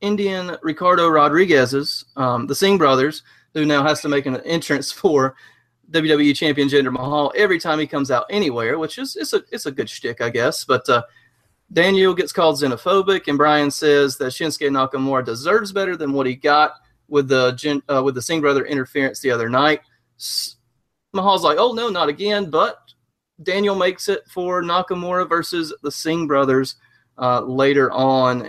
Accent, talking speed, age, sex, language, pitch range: American, 180 wpm, 30-49, male, English, 130-170 Hz